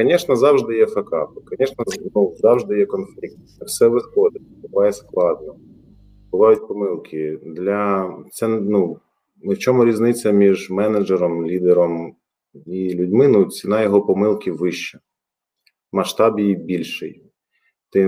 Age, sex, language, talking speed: 30-49, male, Ukrainian, 110 wpm